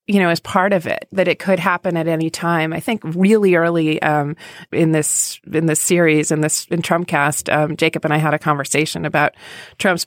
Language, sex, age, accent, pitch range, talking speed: English, female, 30-49, American, 155-180 Hz, 220 wpm